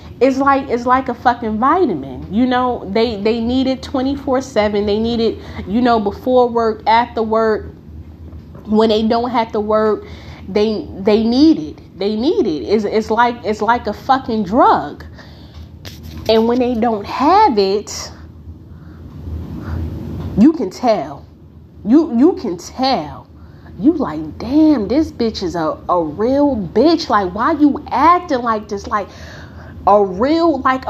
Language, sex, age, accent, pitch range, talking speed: English, female, 20-39, American, 195-280 Hz, 150 wpm